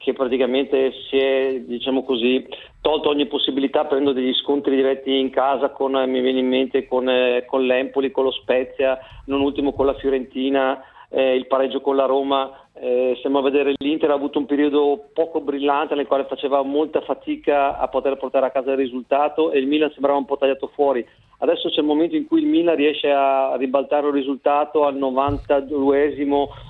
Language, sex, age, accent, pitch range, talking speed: Italian, male, 40-59, native, 135-170 Hz, 185 wpm